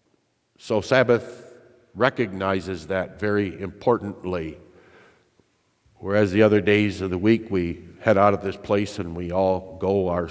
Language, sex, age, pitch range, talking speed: English, male, 50-69, 90-110 Hz, 140 wpm